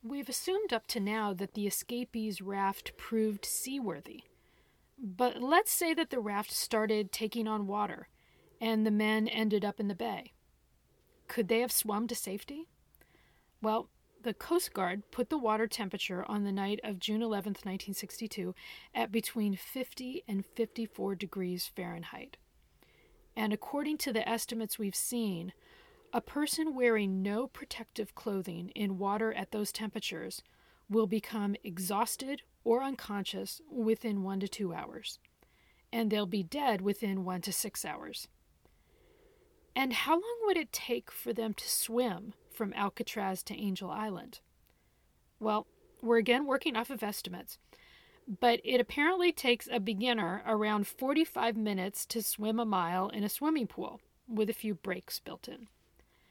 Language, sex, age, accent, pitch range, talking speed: English, female, 40-59, American, 205-245 Hz, 150 wpm